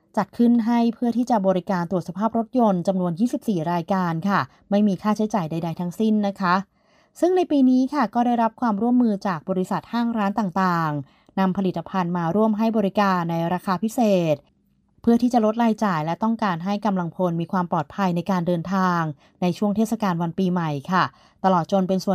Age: 20-39